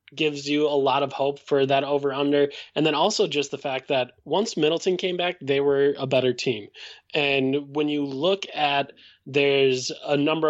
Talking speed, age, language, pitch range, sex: 190 wpm, 20-39, English, 135-165 Hz, male